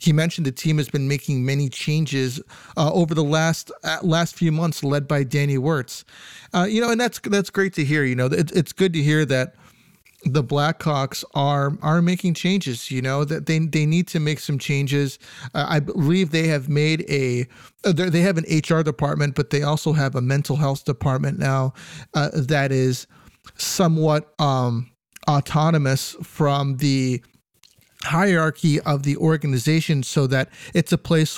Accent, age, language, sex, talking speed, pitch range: American, 40-59, English, male, 175 wpm, 140-170 Hz